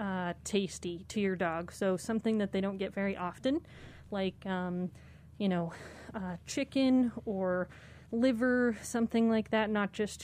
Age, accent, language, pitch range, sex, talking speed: 30-49, American, English, 190-215 Hz, female, 150 wpm